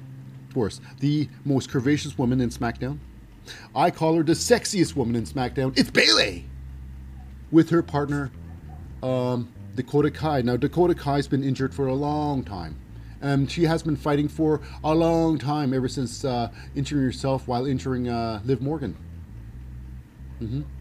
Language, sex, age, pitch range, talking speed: English, male, 30-49, 105-155 Hz, 155 wpm